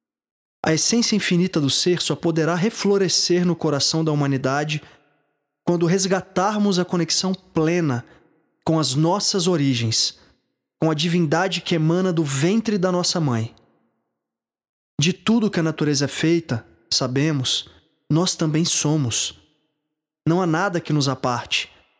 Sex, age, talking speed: male, 20-39, 130 wpm